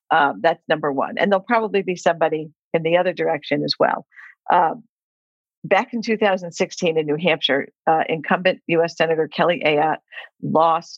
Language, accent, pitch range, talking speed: English, American, 155-185 Hz, 160 wpm